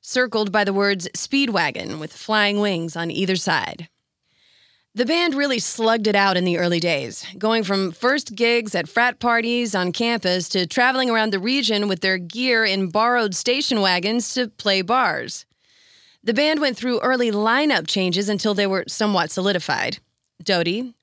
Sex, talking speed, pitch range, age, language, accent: female, 165 wpm, 185-240 Hz, 30-49, English, American